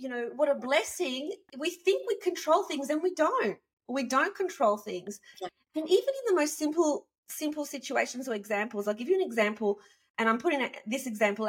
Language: English